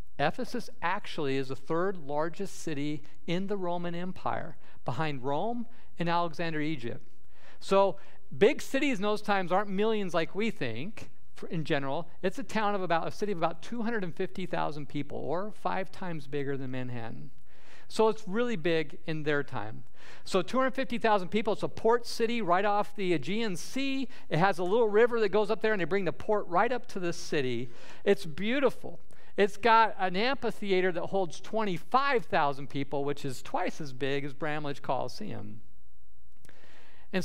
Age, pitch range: 50-69, 145-210 Hz